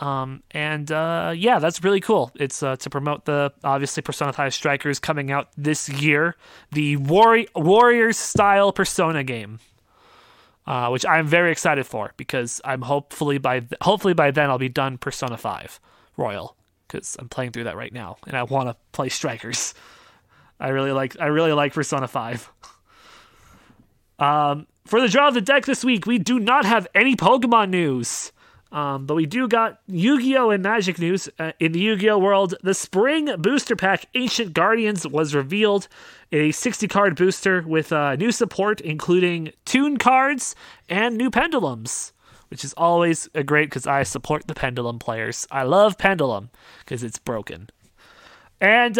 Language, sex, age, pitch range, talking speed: English, male, 20-39, 140-215 Hz, 165 wpm